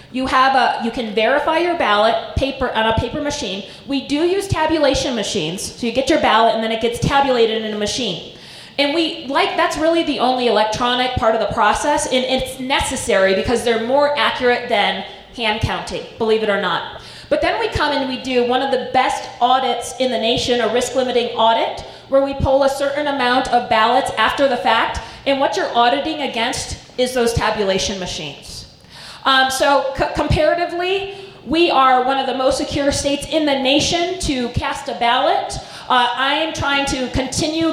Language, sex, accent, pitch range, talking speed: English, female, American, 235-290 Hz, 190 wpm